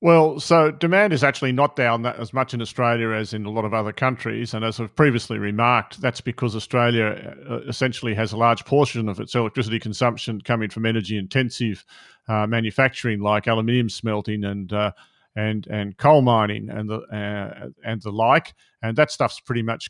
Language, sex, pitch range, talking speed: English, male, 110-130 Hz, 185 wpm